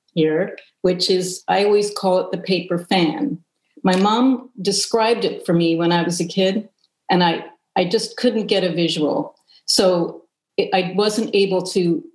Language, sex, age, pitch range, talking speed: English, female, 50-69, 170-200 Hz, 175 wpm